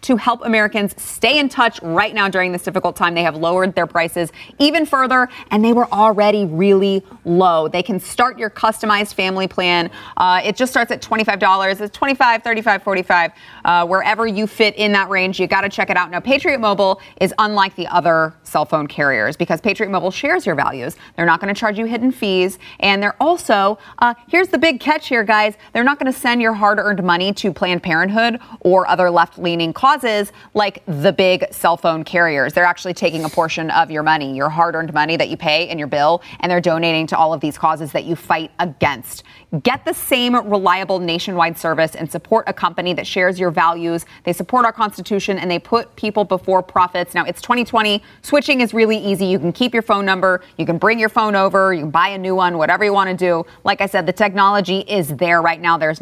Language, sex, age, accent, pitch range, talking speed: English, female, 30-49, American, 170-215 Hz, 215 wpm